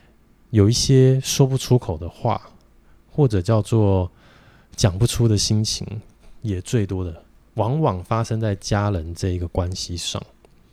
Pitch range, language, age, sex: 95-120 Hz, Chinese, 20-39, male